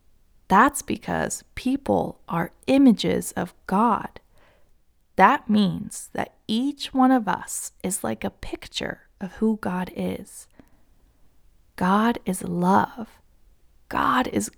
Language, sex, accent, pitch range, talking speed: English, female, American, 185-240 Hz, 110 wpm